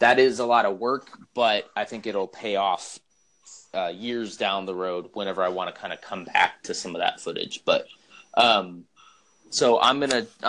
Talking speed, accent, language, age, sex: 200 wpm, American, English, 20-39, male